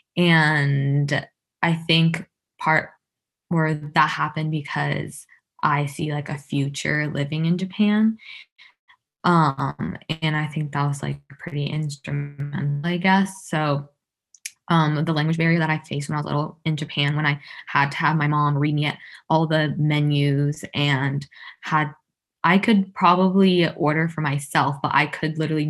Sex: female